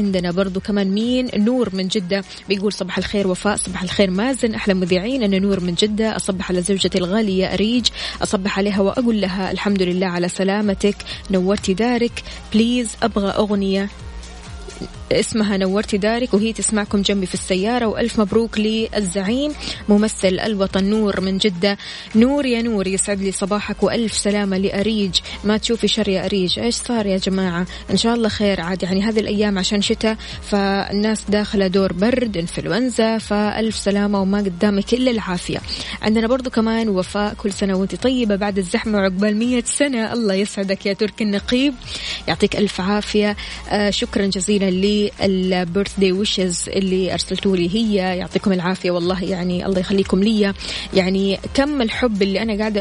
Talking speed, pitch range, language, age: 155 wpm, 190-220 Hz, Arabic, 20-39